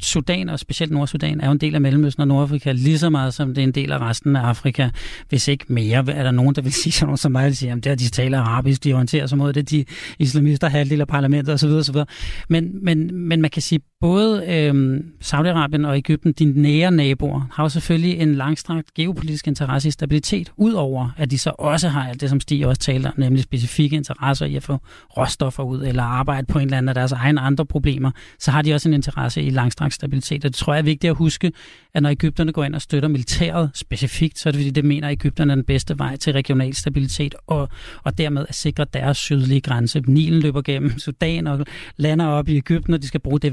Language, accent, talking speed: Danish, native, 235 wpm